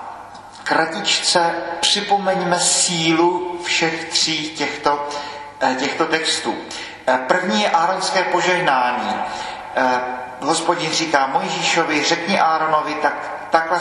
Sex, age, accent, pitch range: male, 40-59, native, 140-170 Hz